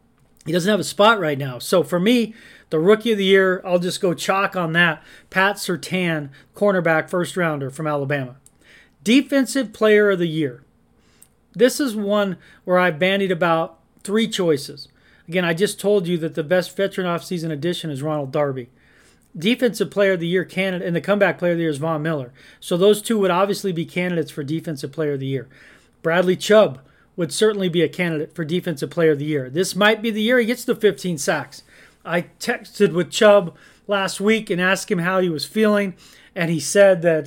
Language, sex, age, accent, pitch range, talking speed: English, male, 40-59, American, 165-205 Hz, 200 wpm